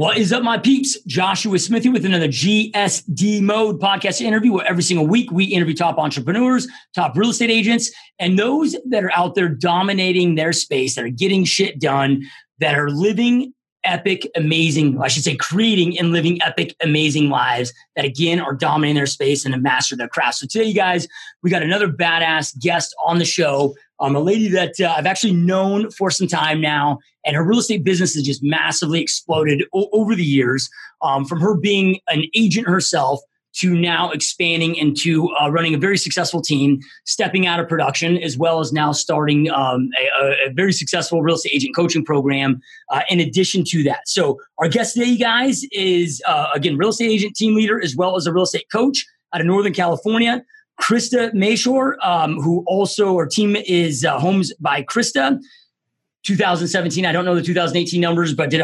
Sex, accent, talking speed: male, American, 195 wpm